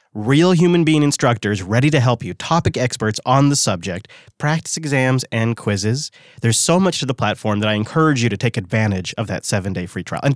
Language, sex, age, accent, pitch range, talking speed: English, male, 30-49, American, 115-155 Hz, 210 wpm